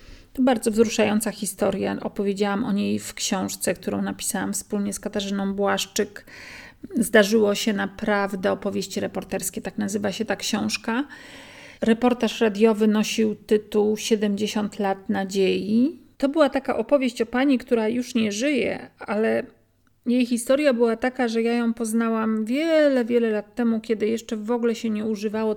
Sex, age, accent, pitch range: female, 40-59, native, 205-235 Hz